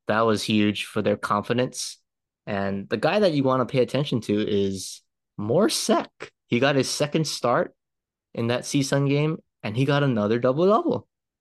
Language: English